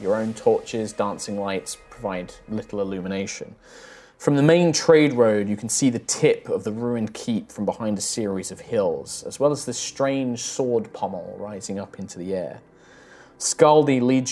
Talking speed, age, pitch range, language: 175 wpm, 20-39, 105-140 Hz, English